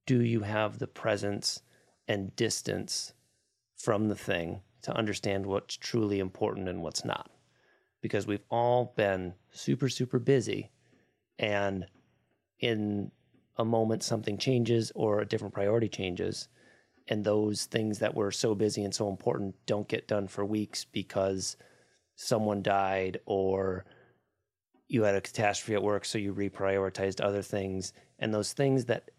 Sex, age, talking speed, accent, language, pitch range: male, 30-49, 145 wpm, American, English, 100-120 Hz